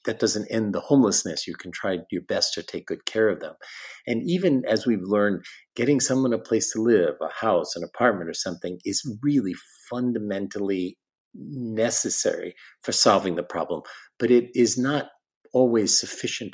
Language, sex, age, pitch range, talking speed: English, male, 50-69, 95-125 Hz, 170 wpm